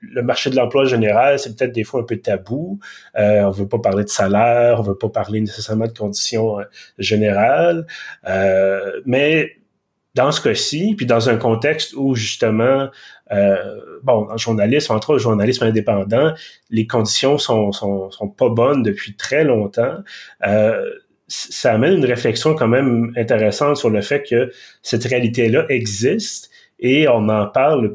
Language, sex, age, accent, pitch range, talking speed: French, male, 30-49, Canadian, 110-145 Hz, 160 wpm